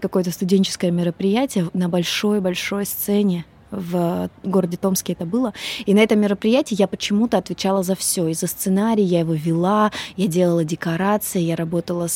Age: 20-39